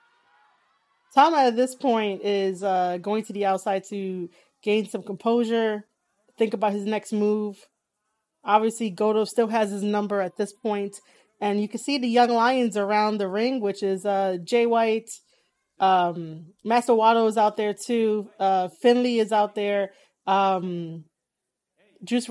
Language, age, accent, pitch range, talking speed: English, 30-49, American, 195-235 Hz, 155 wpm